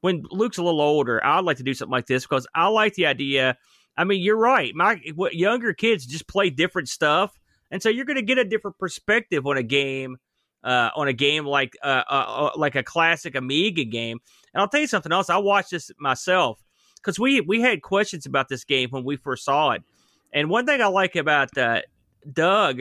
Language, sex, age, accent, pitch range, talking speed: English, male, 30-49, American, 140-195 Hz, 220 wpm